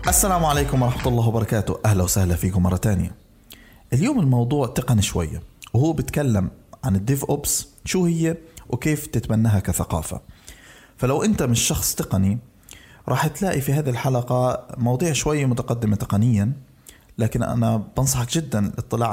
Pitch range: 110-135 Hz